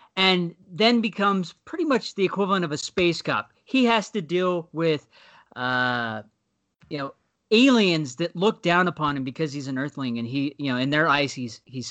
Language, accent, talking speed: English, American, 190 wpm